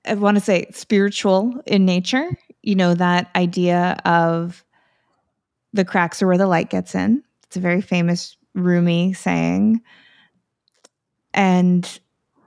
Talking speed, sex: 130 wpm, female